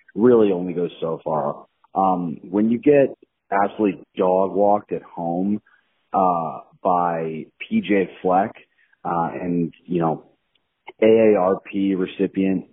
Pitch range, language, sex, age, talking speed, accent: 85-105 Hz, English, male, 30-49, 115 wpm, American